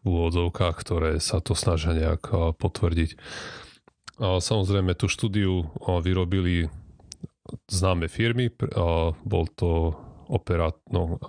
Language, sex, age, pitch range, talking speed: Slovak, male, 30-49, 85-100 Hz, 85 wpm